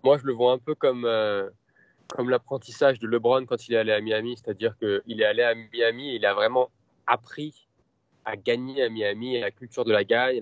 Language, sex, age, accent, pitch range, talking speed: French, male, 20-39, French, 115-185 Hz, 225 wpm